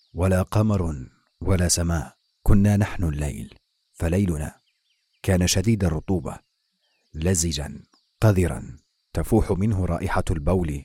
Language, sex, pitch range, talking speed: English, male, 85-100 Hz, 95 wpm